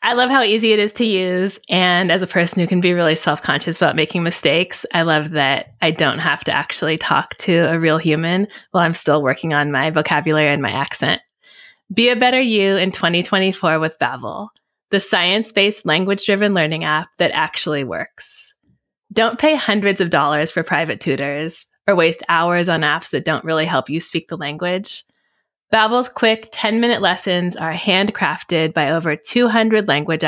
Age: 20-39